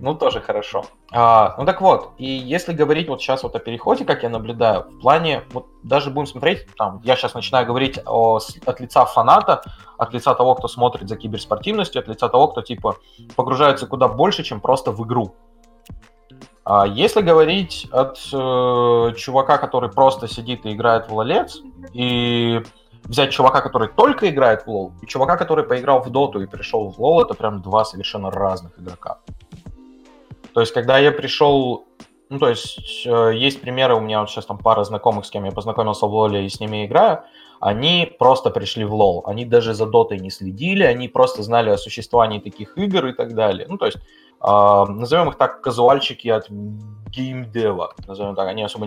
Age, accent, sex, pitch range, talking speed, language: 20-39, native, male, 105-130 Hz, 185 wpm, Russian